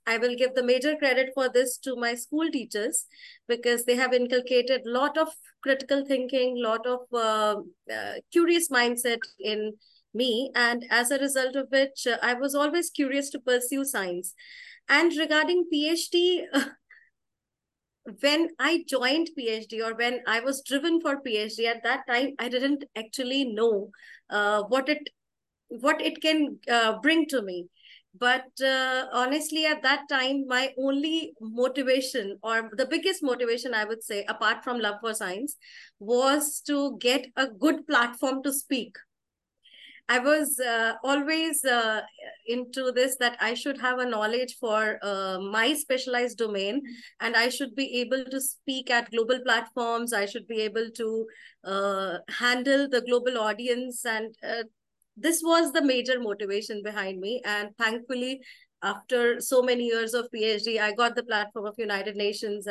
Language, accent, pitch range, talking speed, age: English, Indian, 225-280 Hz, 155 wpm, 30-49